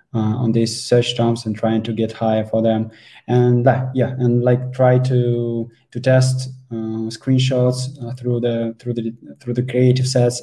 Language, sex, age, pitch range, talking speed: English, male, 20-39, 115-130 Hz, 185 wpm